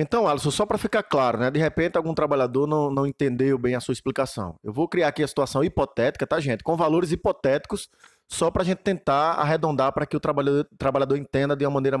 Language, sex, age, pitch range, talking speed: Portuguese, male, 20-39, 145-195 Hz, 225 wpm